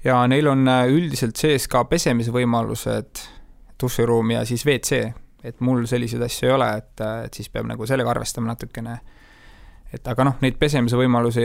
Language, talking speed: English, 160 wpm